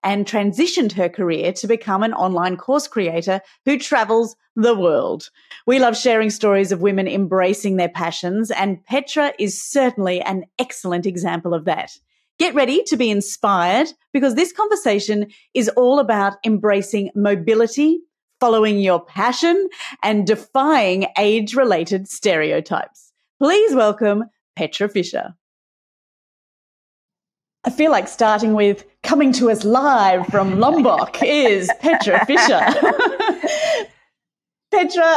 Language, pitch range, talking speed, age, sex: English, 195-270 Hz, 120 wpm, 30-49, female